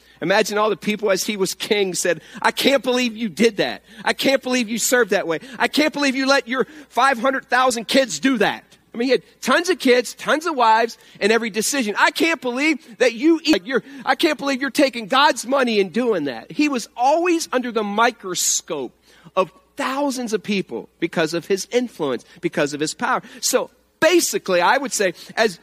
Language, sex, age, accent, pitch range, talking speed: English, male, 40-59, American, 180-265 Hz, 200 wpm